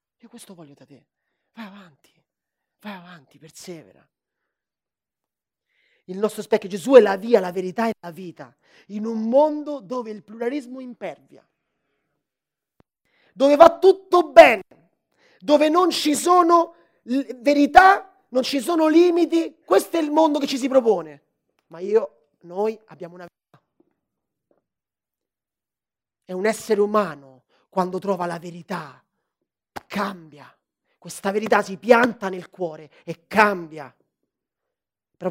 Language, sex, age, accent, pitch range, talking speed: Italian, male, 30-49, native, 175-255 Hz, 125 wpm